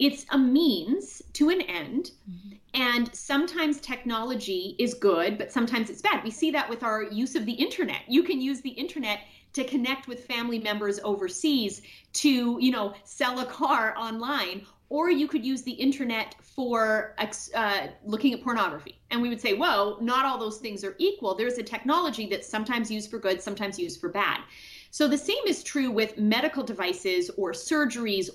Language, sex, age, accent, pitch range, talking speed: English, female, 30-49, American, 215-290 Hz, 180 wpm